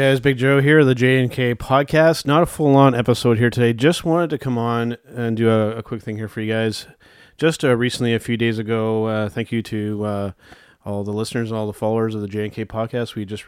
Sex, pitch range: male, 105-120 Hz